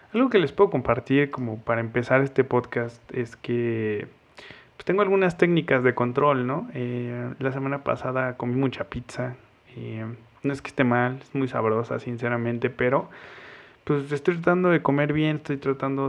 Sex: male